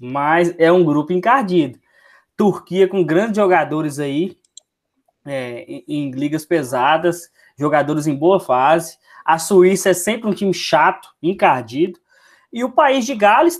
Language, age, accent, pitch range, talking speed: Portuguese, 20-39, Brazilian, 160-200 Hz, 135 wpm